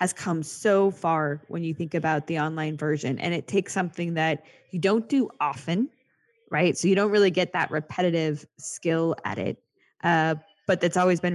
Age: 10-29